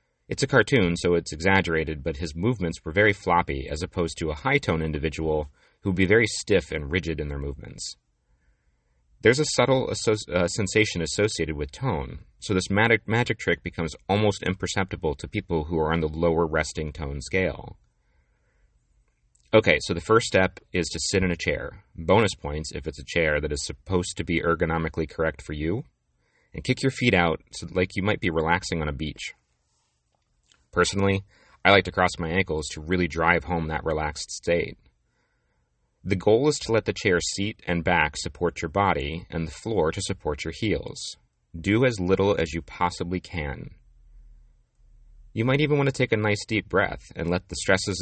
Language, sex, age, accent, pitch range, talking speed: English, male, 30-49, American, 75-100 Hz, 190 wpm